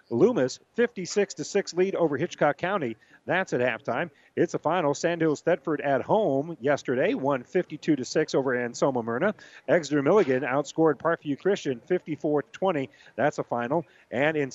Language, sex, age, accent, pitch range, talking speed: English, male, 40-59, American, 130-170 Hz, 135 wpm